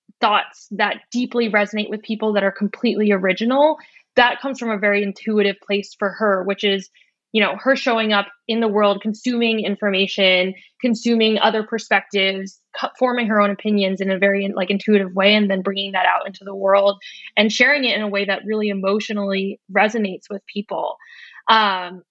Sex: female